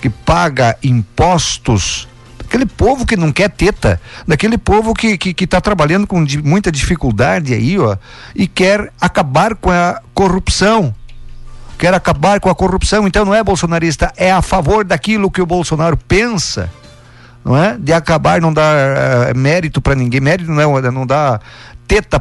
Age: 50-69